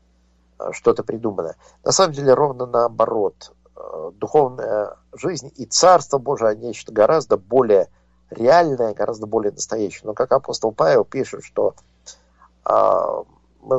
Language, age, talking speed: Russian, 50-69, 120 wpm